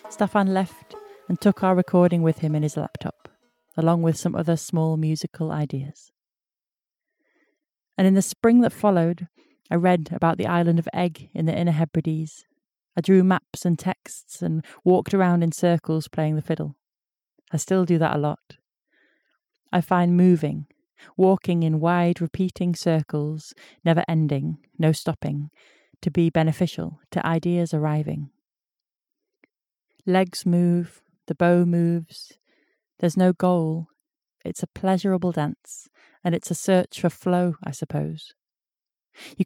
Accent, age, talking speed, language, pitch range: British, 30-49, 140 wpm, English, 160-185 Hz